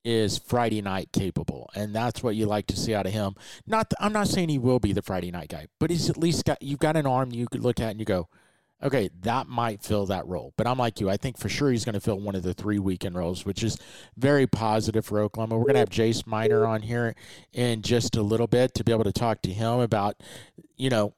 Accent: American